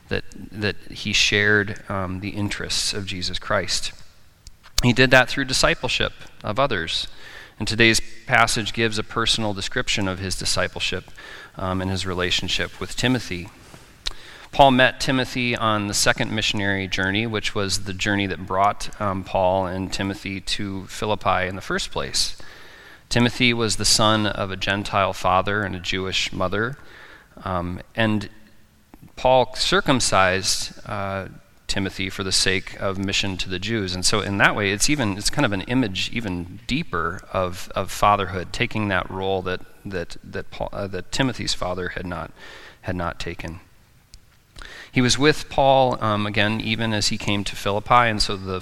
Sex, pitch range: male, 95-115 Hz